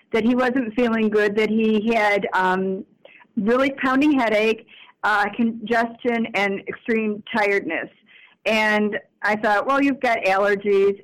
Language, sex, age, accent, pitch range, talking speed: English, female, 50-69, American, 210-250 Hz, 130 wpm